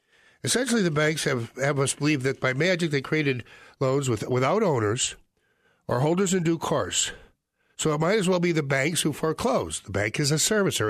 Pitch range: 115-155 Hz